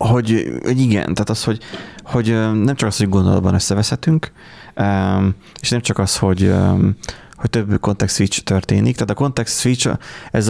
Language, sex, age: Hungarian, male, 20-39